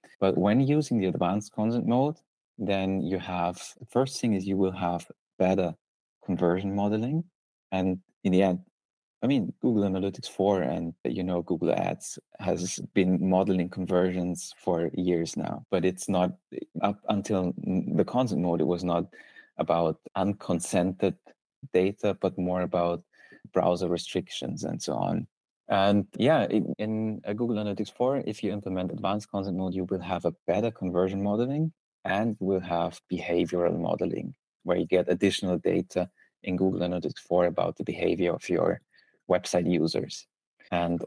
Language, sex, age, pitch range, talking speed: English, male, 30-49, 90-100 Hz, 155 wpm